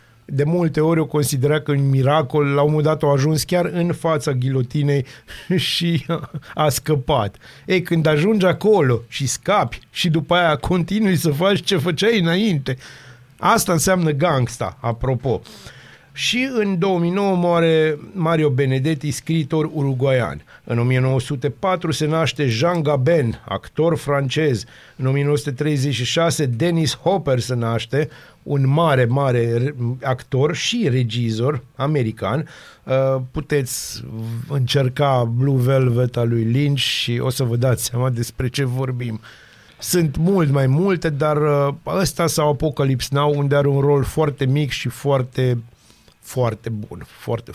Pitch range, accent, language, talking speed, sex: 130-165 Hz, native, Romanian, 130 wpm, male